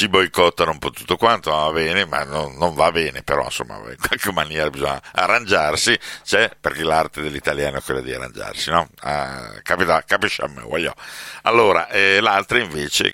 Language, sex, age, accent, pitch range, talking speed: Italian, male, 60-79, native, 70-95 Hz, 170 wpm